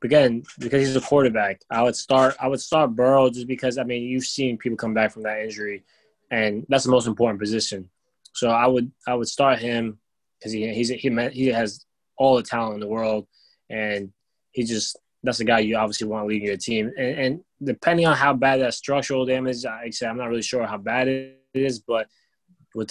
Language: English